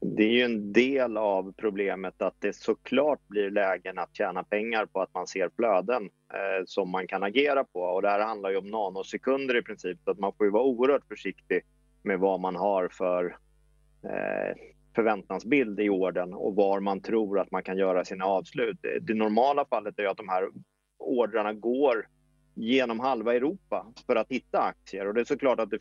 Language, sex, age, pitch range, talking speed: English, male, 30-49, 95-130 Hz, 190 wpm